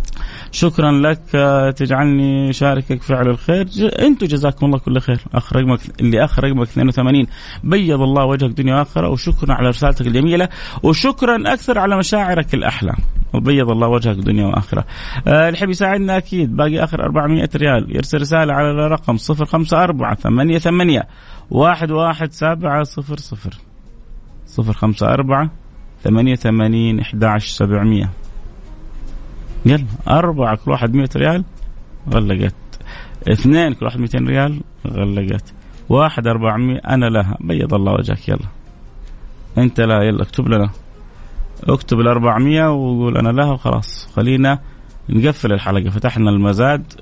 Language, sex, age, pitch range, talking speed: Arabic, male, 30-49, 110-155 Hz, 110 wpm